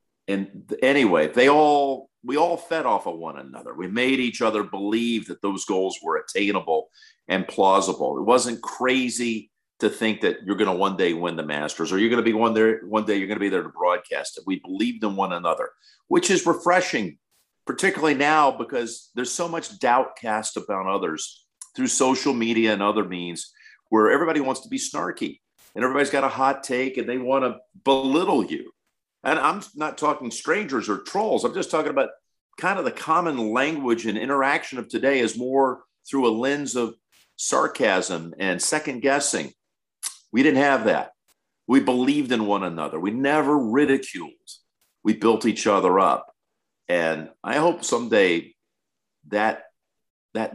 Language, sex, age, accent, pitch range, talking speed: English, male, 50-69, American, 110-155 Hz, 175 wpm